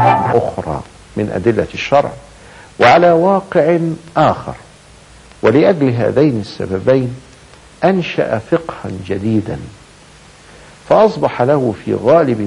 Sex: male